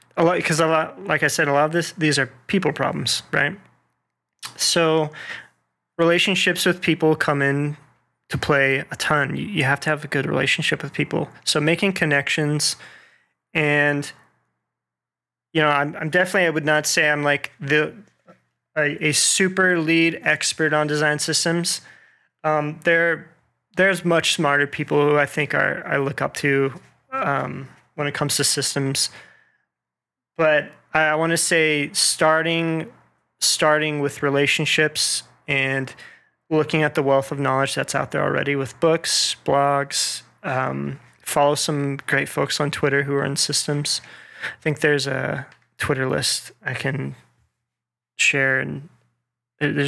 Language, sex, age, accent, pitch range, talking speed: English, male, 20-39, American, 140-155 Hz, 150 wpm